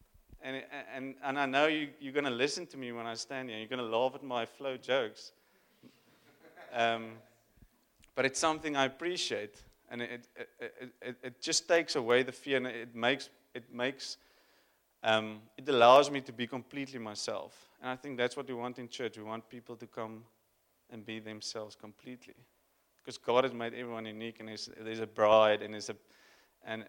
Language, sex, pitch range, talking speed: English, male, 110-130 Hz, 190 wpm